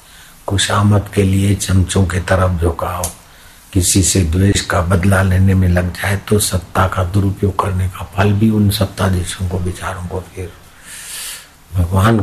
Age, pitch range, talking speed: 60-79, 85-100 Hz, 150 wpm